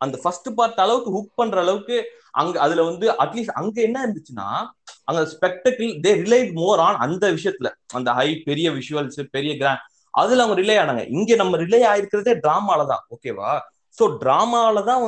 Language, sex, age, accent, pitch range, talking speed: Tamil, male, 20-39, native, 165-235 Hz, 160 wpm